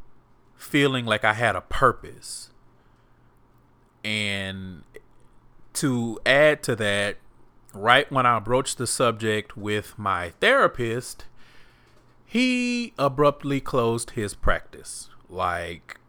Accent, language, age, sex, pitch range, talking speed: American, English, 30-49, male, 100-125 Hz, 95 wpm